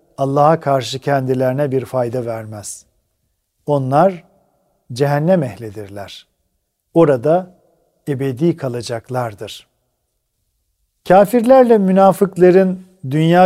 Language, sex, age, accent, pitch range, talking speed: Turkish, male, 50-69, native, 140-185 Hz, 65 wpm